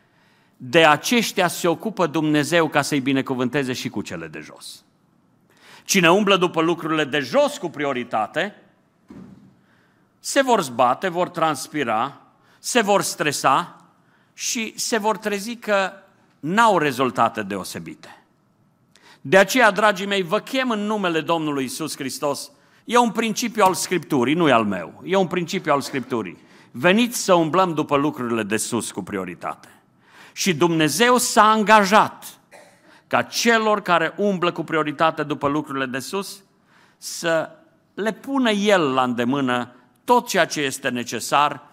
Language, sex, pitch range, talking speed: Romanian, male, 140-205 Hz, 140 wpm